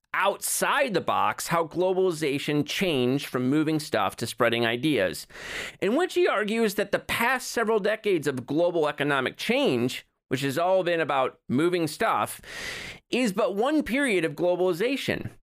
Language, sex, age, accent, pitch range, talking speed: English, male, 30-49, American, 155-230 Hz, 145 wpm